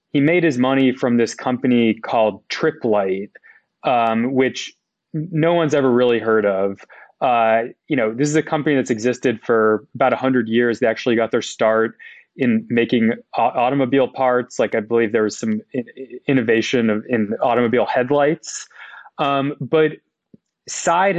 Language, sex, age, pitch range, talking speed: English, male, 20-39, 115-140 Hz, 155 wpm